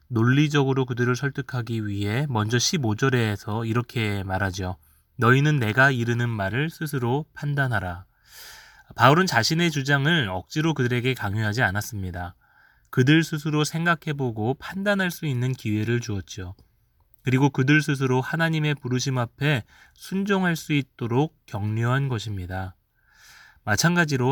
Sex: male